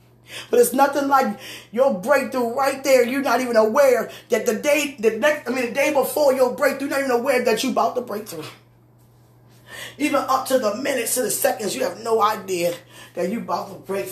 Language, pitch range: English, 175-235 Hz